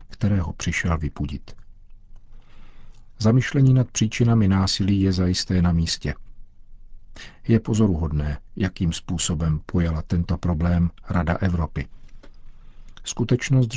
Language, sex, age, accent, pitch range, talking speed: Czech, male, 50-69, native, 85-100 Hz, 90 wpm